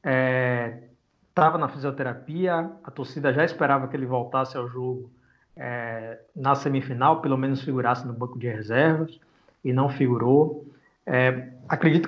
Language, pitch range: Portuguese, 130-165 Hz